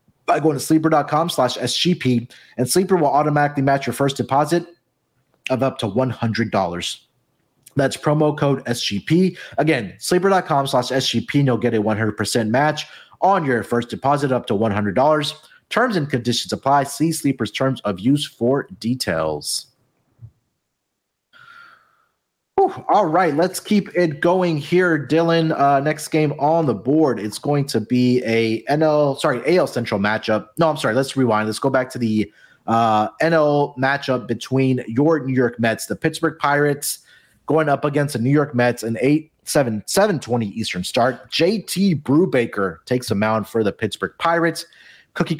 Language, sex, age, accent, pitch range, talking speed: English, male, 30-49, American, 120-150 Hz, 155 wpm